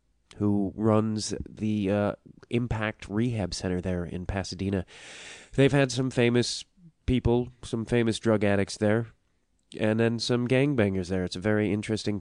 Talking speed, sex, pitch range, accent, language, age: 145 wpm, male, 100-120 Hz, American, English, 30-49